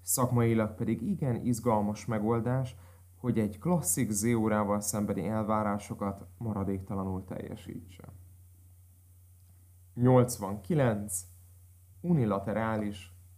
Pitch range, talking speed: 90-120 Hz, 65 wpm